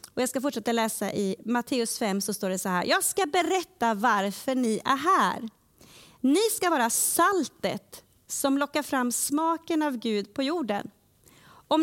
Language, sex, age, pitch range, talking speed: Swedish, female, 30-49, 210-275 Hz, 165 wpm